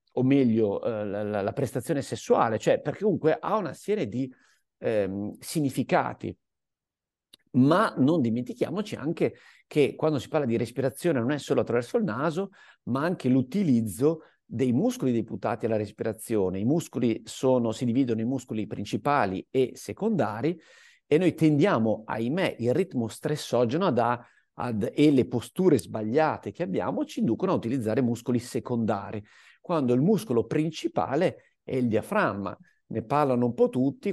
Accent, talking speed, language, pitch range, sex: native, 140 wpm, Italian, 115-145 Hz, male